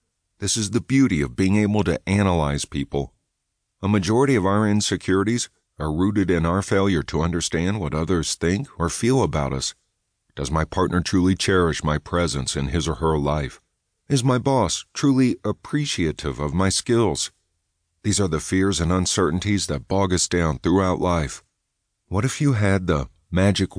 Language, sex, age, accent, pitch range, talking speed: English, male, 50-69, American, 80-105 Hz, 170 wpm